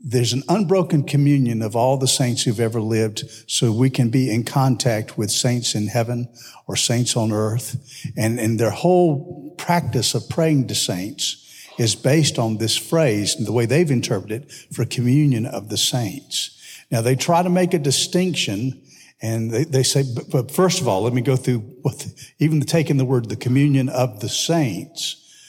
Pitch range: 120-155 Hz